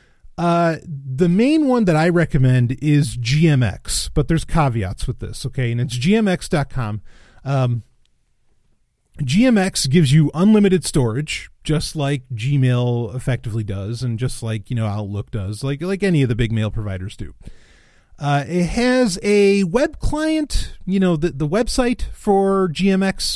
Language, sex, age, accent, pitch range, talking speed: English, male, 30-49, American, 120-175 Hz, 150 wpm